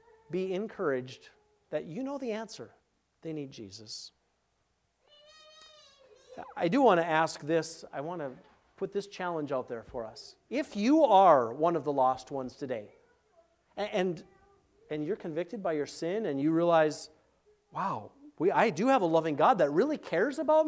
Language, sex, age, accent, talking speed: English, male, 40-59, American, 165 wpm